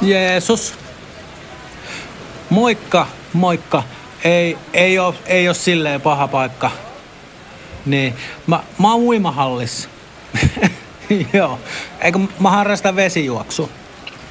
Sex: male